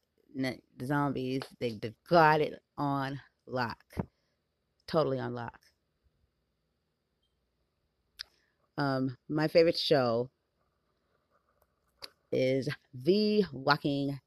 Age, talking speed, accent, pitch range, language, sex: 30-49, 65 wpm, American, 120-155 Hz, English, female